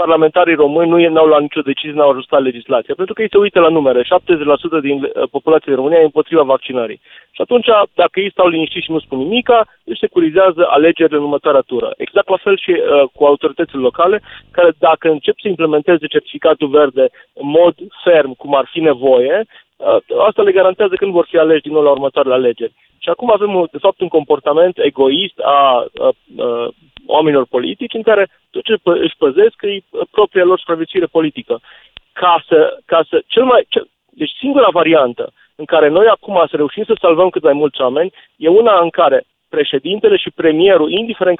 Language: Romanian